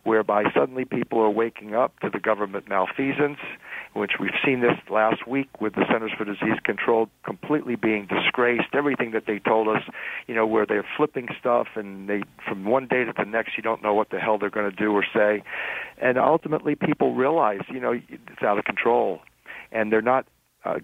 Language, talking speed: English, 200 wpm